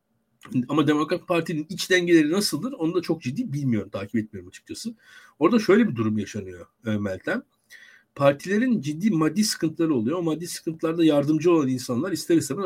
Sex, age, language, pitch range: male, 60-79, Turkish, 125-190 Hz